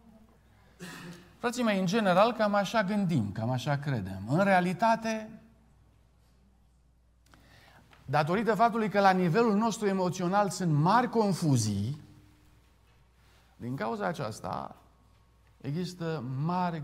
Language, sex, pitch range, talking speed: Romanian, male, 120-165 Hz, 95 wpm